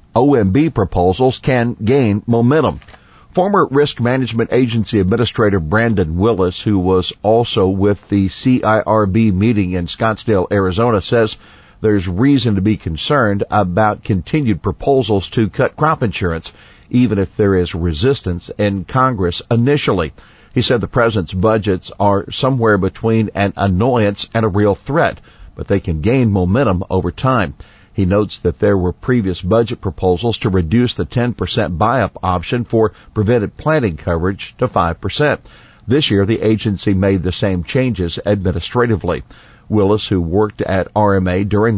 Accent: American